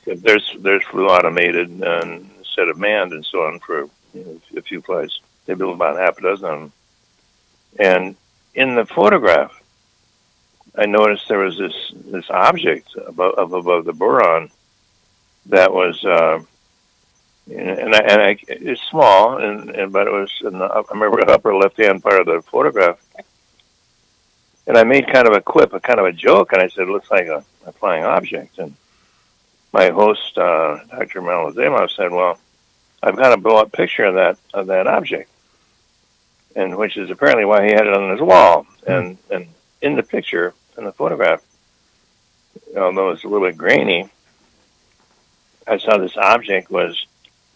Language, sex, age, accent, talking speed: English, male, 60-79, American, 175 wpm